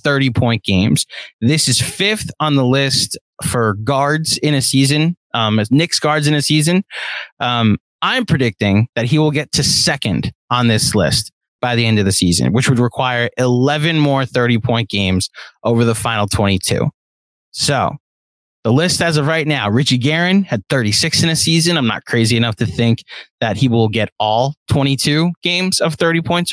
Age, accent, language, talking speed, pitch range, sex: 20-39, American, English, 175 wpm, 110-150 Hz, male